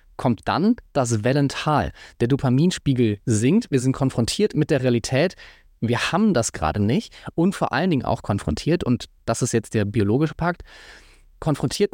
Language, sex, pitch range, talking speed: German, male, 115-155 Hz, 160 wpm